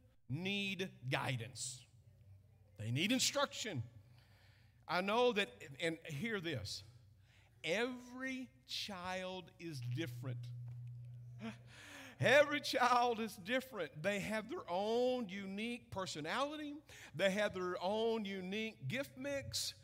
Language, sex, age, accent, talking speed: English, male, 50-69, American, 95 wpm